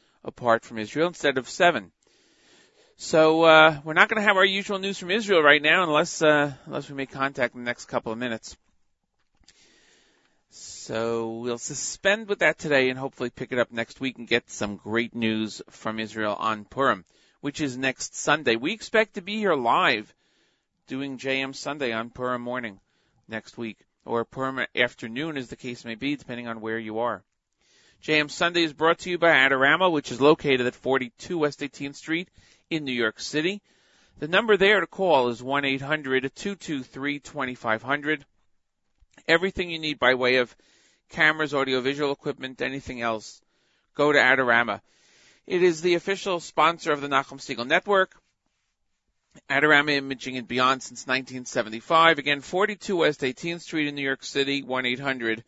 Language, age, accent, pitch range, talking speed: English, 40-59, American, 120-160 Hz, 165 wpm